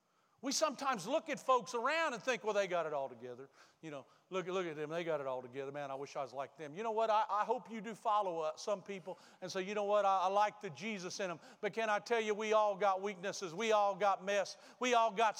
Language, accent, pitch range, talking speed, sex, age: English, American, 195-255 Hz, 280 wpm, male, 50-69